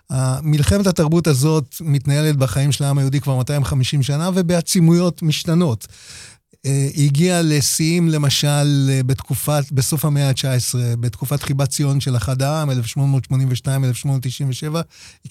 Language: Hebrew